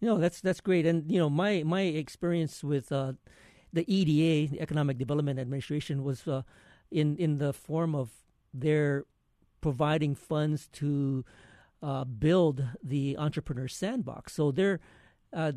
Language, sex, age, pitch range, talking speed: English, male, 50-69, 135-165 Hz, 145 wpm